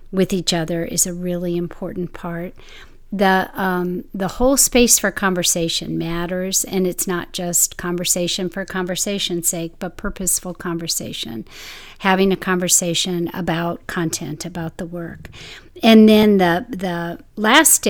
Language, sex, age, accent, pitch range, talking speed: English, female, 50-69, American, 170-190 Hz, 135 wpm